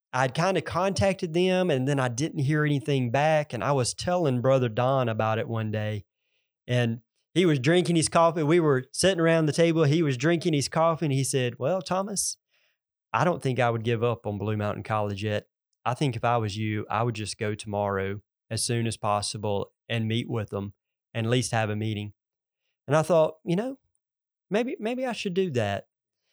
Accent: American